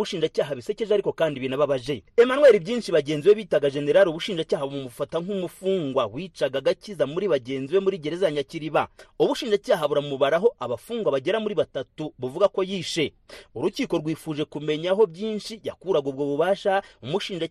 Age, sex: 30-49, male